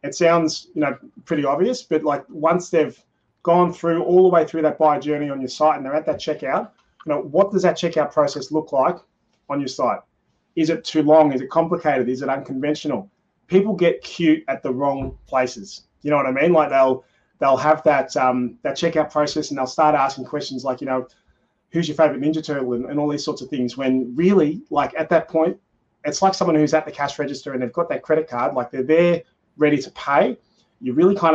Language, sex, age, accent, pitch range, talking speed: English, male, 30-49, Australian, 140-170 Hz, 230 wpm